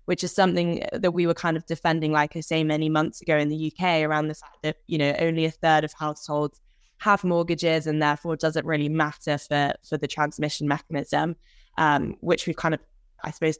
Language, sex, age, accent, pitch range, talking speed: English, female, 20-39, British, 155-175 Hz, 210 wpm